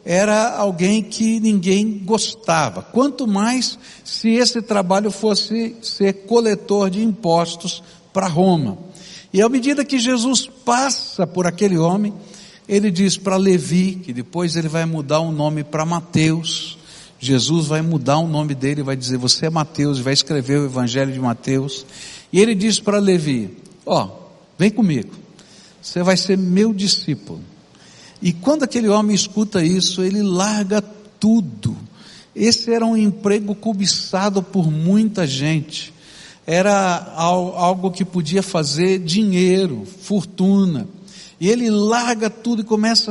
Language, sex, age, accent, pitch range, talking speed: Portuguese, male, 60-79, Brazilian, 170-215 Hz, 140 wpm